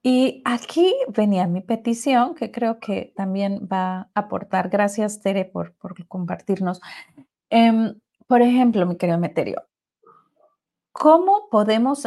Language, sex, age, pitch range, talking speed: Spanish, female, 30-49, 190-245 Hz, 125 wpm